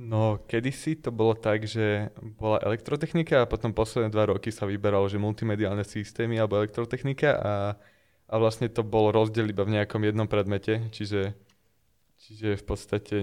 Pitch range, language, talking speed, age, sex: 105-120 Hz, Slovak, 160 wpm, 20-39, male